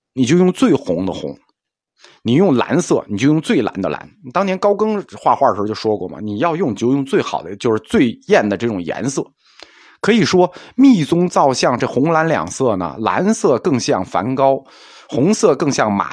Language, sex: Chinese, male